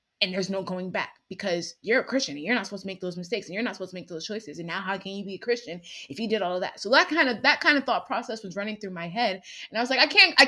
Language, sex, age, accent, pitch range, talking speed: English, female, 20-39, American, 175-240 Hz, 345 wpm